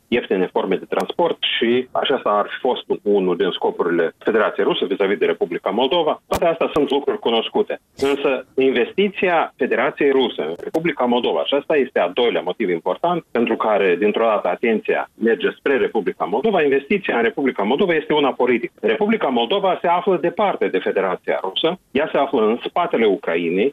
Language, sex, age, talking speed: Romanian, male, 40-59, 170 wpm